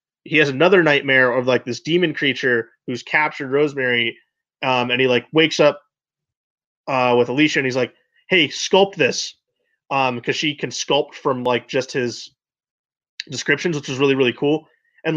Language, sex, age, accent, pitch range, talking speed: English, male, 20-39, American, 125-155 Hz, 170 wpm